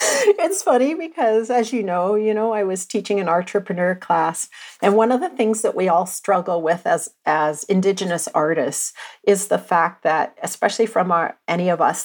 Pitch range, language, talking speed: 165-215 Hz, English, 190 wpm